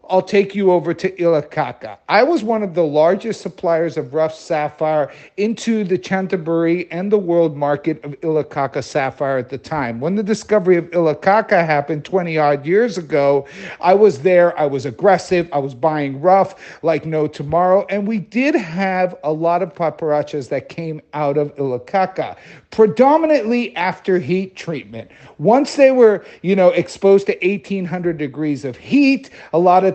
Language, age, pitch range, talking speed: English, 50-69, 160-220 Hz, 170 wpm